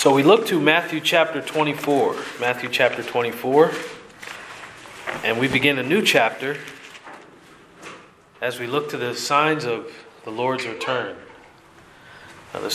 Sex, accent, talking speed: male, American, 125 wpm